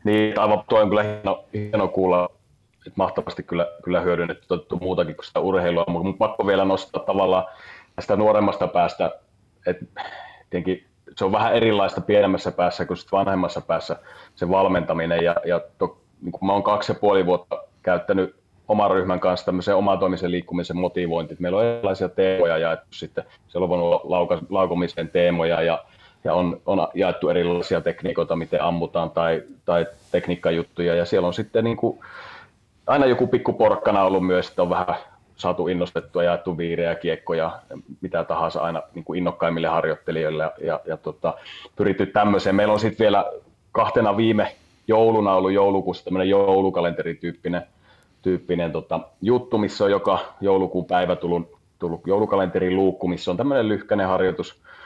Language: Finnish